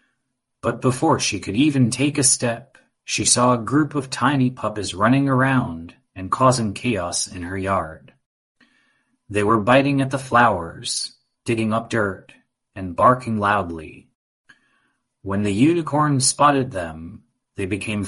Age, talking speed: 30-49, 140 wpm